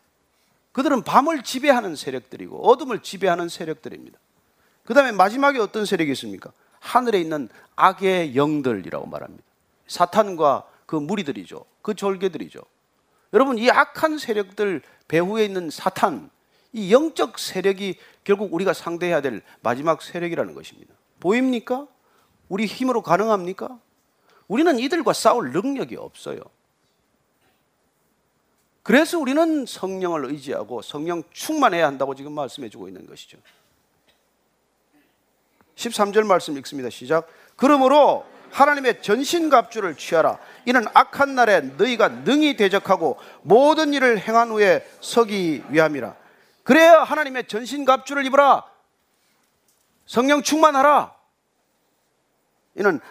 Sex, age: male, 40-59